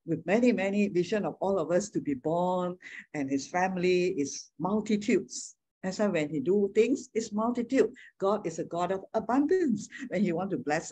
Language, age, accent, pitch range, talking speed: English, 50-69, Malaysian, 165-235 Hz, 190 wpm